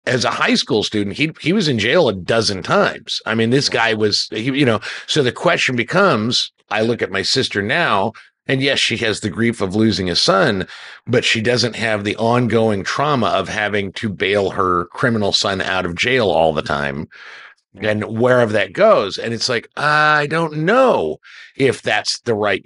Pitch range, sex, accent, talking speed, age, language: 115-160 Hz, male, American, 200 wpm, 50-69, English